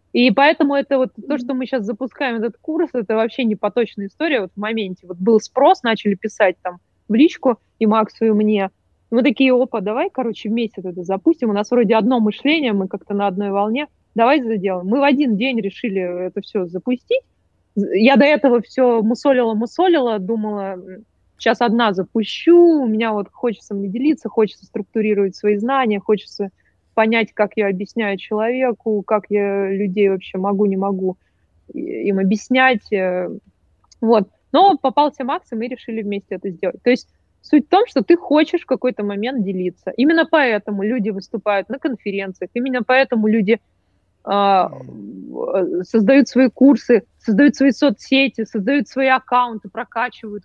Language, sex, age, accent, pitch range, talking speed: Russian, female, 20-39, native, 200-255 Hz, 160 wpm